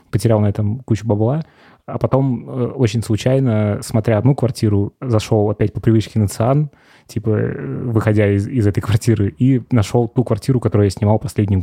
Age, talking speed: 20-39, 165 wpm